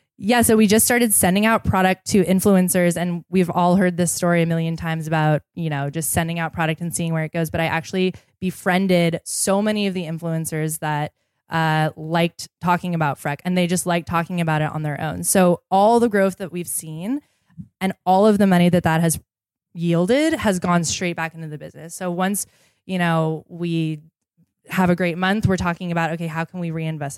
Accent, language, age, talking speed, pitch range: American, English, 10-29, 210 wpm, 160-190 Hz